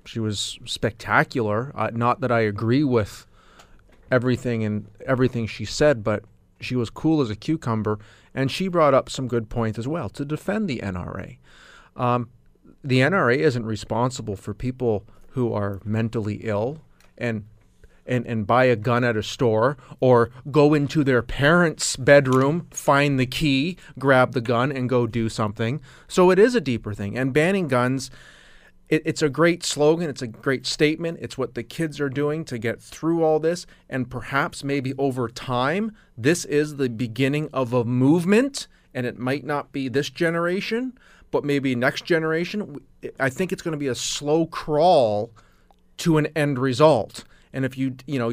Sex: male